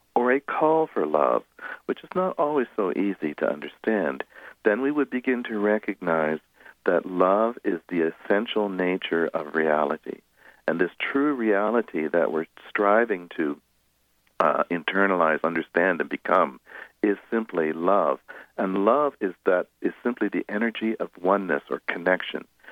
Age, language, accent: 60-79, English, American